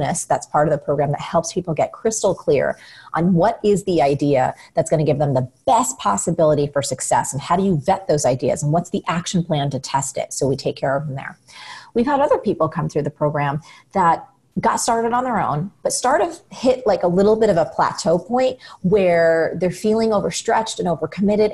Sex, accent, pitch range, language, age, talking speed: female, American, 160-225 Hz, English, 30-49, 220 wpm